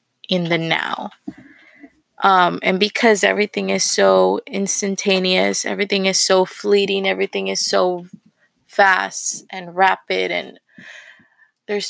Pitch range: 185-210 Hz